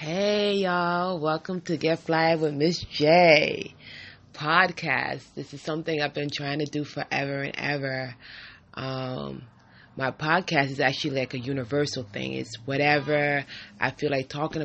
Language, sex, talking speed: English, female, 150 wpm